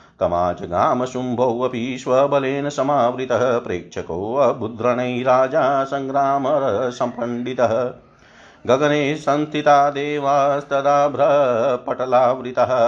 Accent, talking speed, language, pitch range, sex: native, 50 wpm, Hindi, 120-140 Hz, male